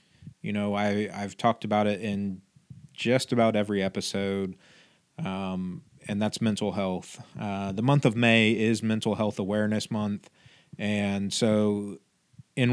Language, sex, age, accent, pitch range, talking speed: English, male, 30-49, American, 105-130 Hz, 135 wpm